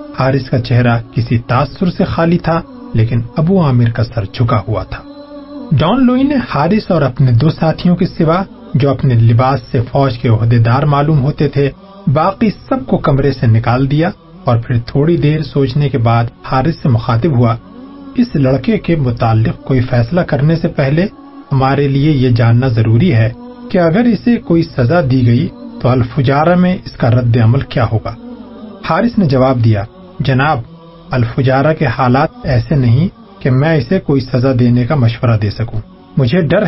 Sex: male